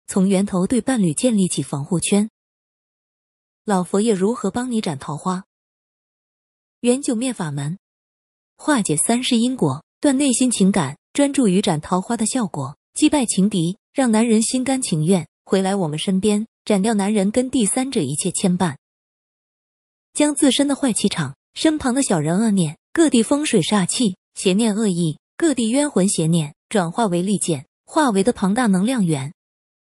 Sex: female